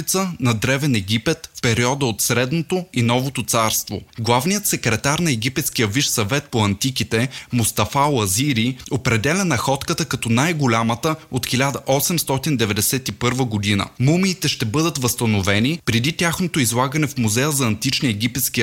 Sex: male